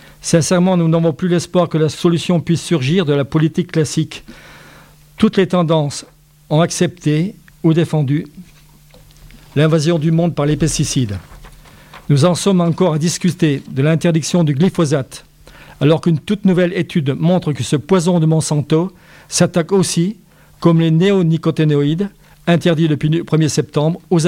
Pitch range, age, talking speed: 150-175 Hz, 50-69, 145 wpm